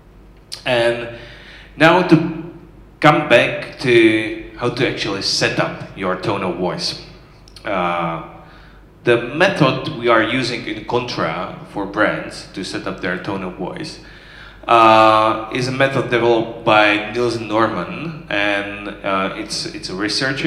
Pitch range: 110-150 Hz